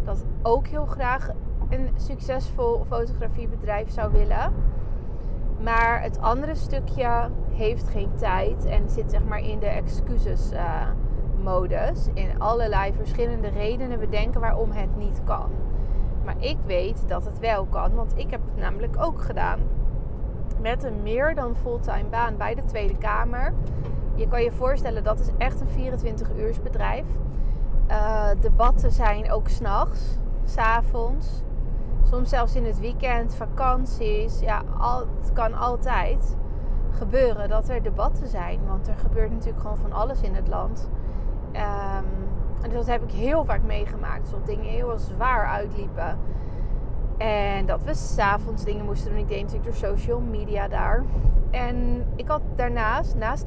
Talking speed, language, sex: 145 wpm, Dutch, female